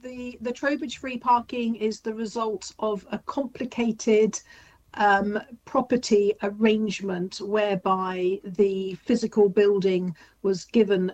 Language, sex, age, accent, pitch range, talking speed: English, female, 50-69, British, 185-220 Hz, 110 wpm